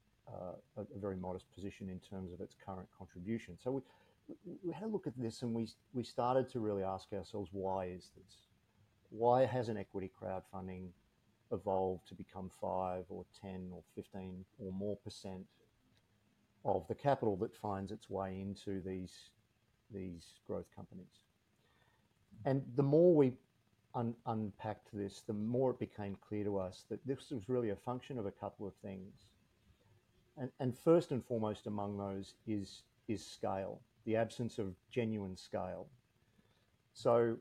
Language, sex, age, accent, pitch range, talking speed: English, male, 50-69, Australian, 95-120 Hz, 160 wpm